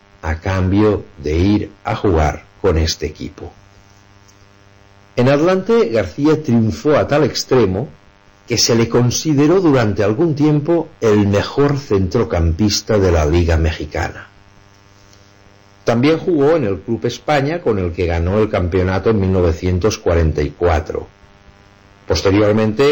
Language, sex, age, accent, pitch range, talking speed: Spanish, male, 60-79, Spanish, 95-110 Hz, 120 wpm